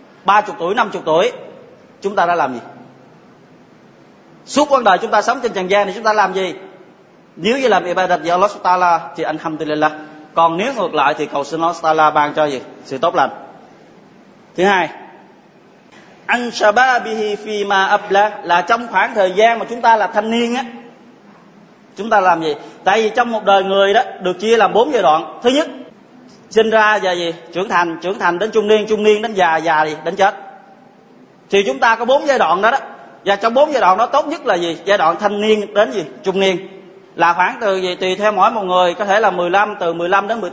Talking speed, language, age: 225 wpm, Vietnamese, 20-39